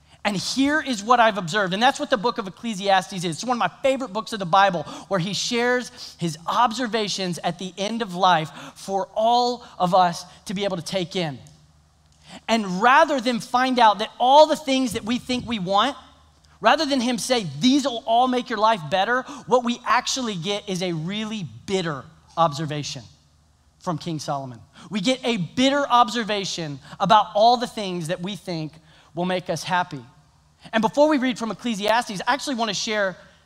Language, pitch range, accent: English, 175-240 Hz, American